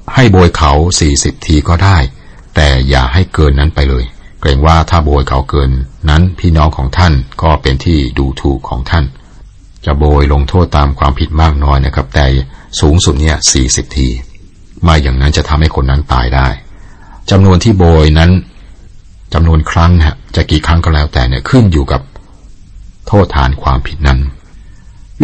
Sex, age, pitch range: male, 60-79, 70-90 Hz